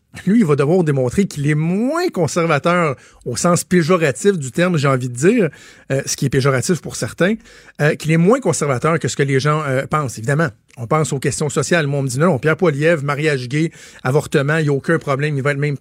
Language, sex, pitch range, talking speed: French, male, 140-170 Hz, 240 wpm